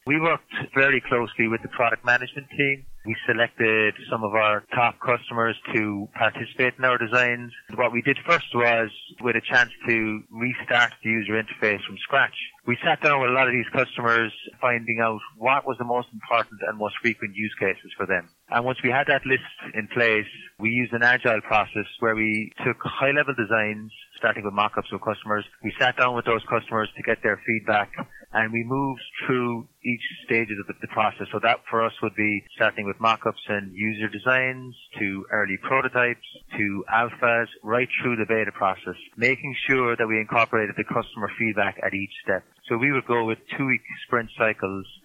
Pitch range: 110-125 Hz